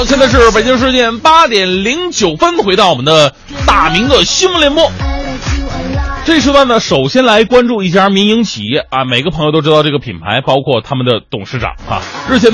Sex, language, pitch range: male, Chinese, 150-245 Hz